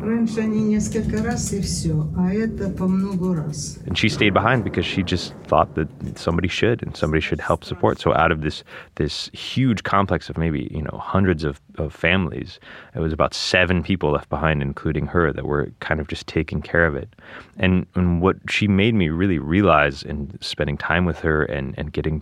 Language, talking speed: English, 175 wpm